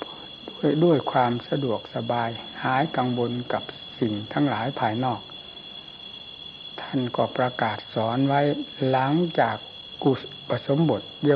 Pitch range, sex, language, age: 115-140 Hz, male, Thai, 60-79